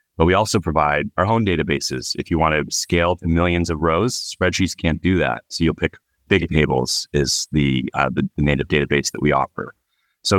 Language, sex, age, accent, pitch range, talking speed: English, male, 30-49, American, 80-100 Hz, 195 wpm